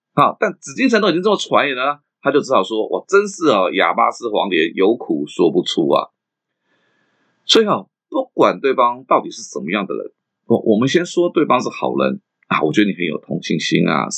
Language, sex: Chinese, male